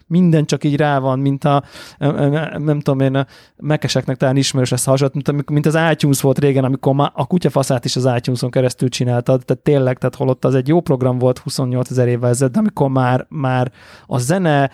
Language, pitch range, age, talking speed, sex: Hungarian, 135-155 Hz, 30-49, 200 wpm, male